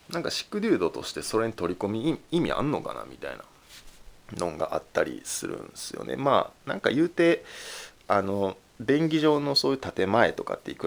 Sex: male